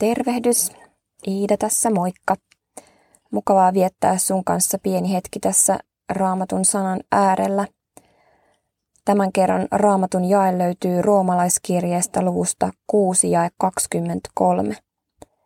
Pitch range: 175-200 Hz